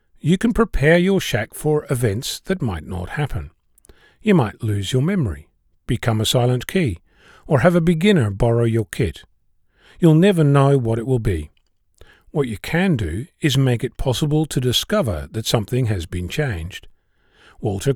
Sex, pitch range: male, 105-145 Hz